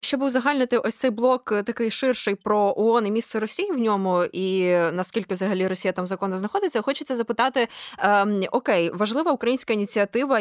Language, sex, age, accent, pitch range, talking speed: Ukrainian, female, 20-39, native, 195-240 Hz, 160 wpm